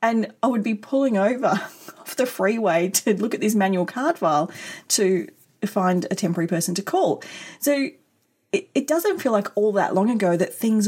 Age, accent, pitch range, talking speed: 30-49, Australian, 180-230 Hz, 195 wpm